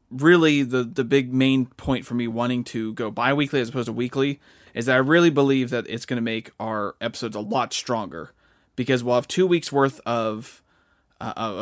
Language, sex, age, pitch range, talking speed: English, male, 30-49, 115-135 Hz, 200 wpm